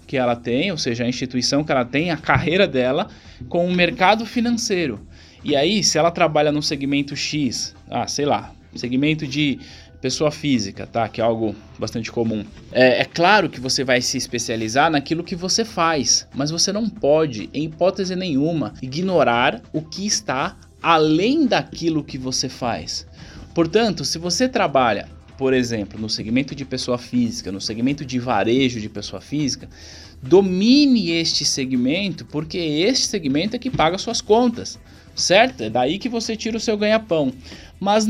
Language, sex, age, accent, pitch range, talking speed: Portuguese, male, 20-39, Brazilian, 125-195 Hz, 165 wpm